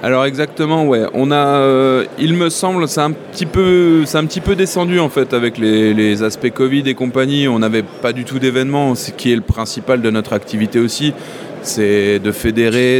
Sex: male